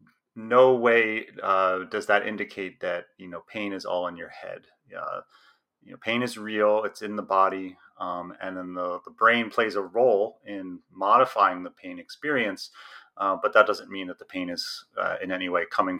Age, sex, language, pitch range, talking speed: 30-49, male, English, 95-115 Hz, 200 wpm